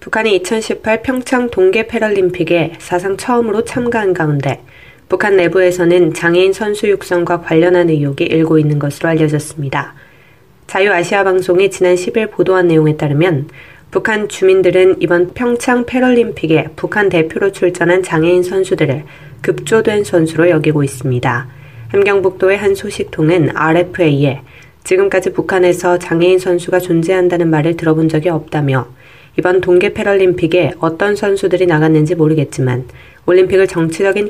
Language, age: Korean, 20-39